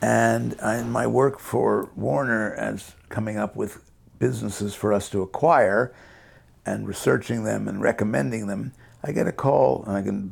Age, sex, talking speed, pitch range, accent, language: 60-79, male, 165 wpm, 95-110 Hz, American, English